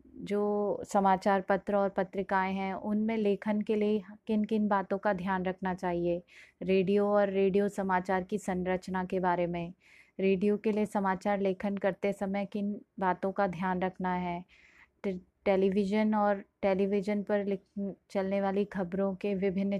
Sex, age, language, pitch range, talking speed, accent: female, 20-39, Hindi, 185-205 Hz, 150 wpm, native